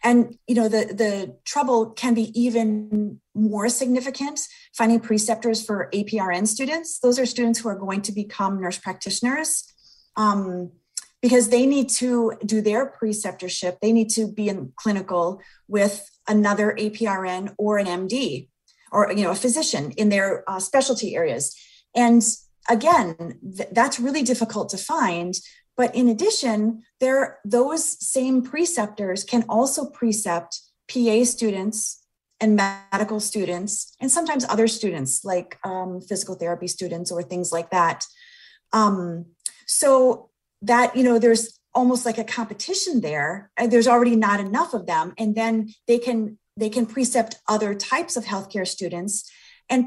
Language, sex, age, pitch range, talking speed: English, female, 30-49, 200-245 Hz, 140 wpm